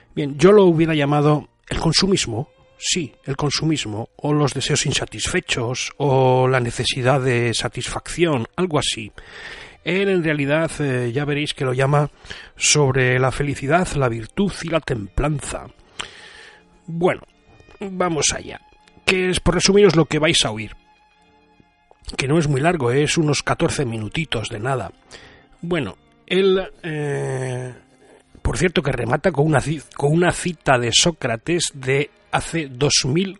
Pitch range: 130-160 Hz